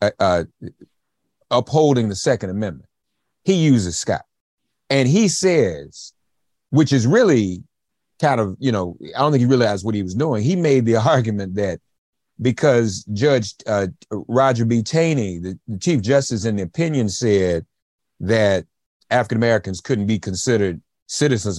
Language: English